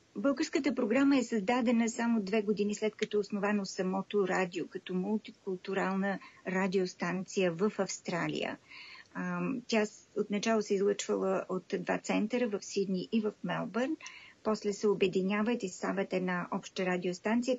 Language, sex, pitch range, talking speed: Bulgarian, female, 195-235 Hz, 125 wpm